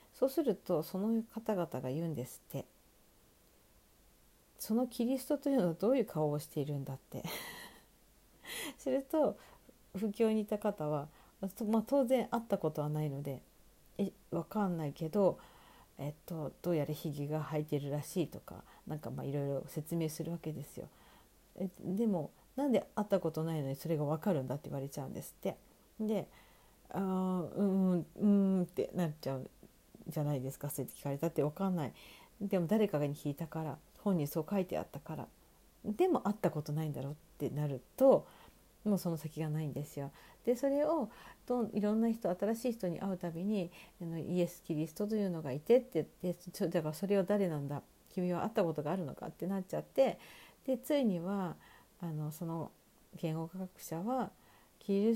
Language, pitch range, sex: Japanese, 150-210 Hz, female